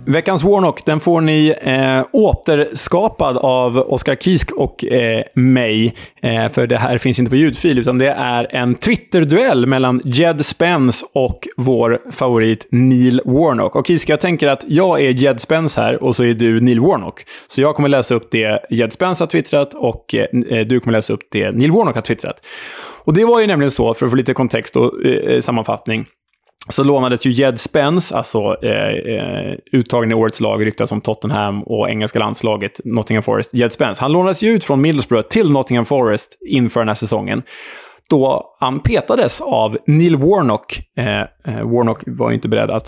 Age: 20-39